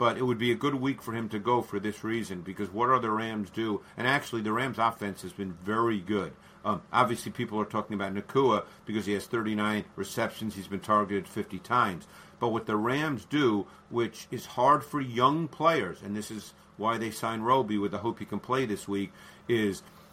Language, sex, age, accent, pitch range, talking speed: English, male, 50-69, American, 105-130 Hz, 220 wpm